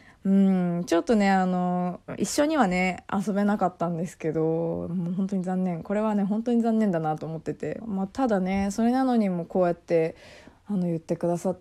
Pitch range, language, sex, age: 165-205 Hz, Japanese, female, 20-39